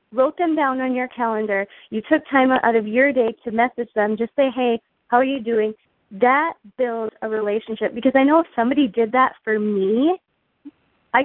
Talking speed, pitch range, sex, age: 195 wpm, 225-285 Hz, female, 20-39